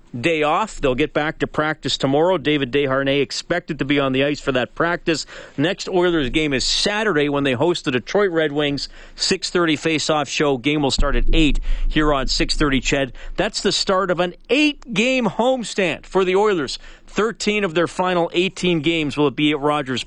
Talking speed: 190 wpm